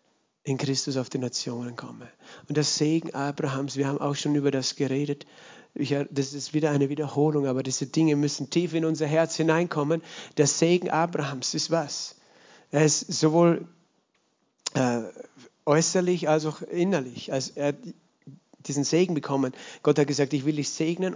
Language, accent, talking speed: German, German, 165 wpm